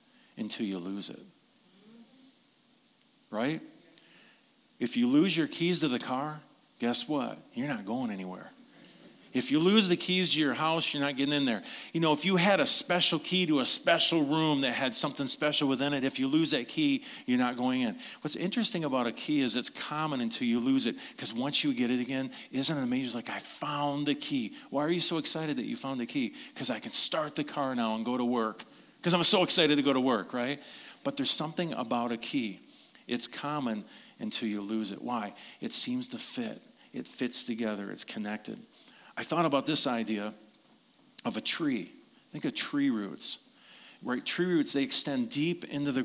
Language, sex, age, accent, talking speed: English, male, 40-59, American, 205 wpm